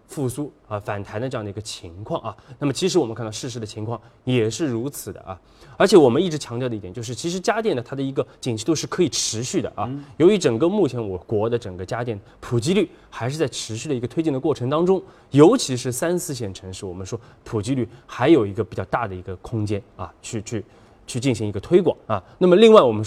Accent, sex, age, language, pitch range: native, male, 20-39, Chinese, 105-140 Hz